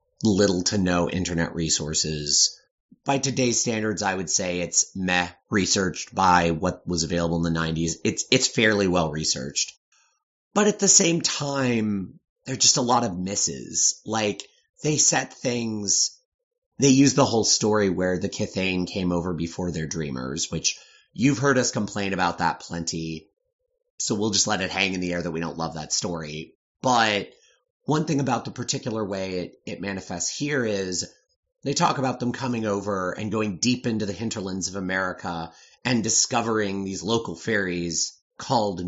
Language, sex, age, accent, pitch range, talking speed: English, male, 30-49, American, 90-135 Hz, 170 wpm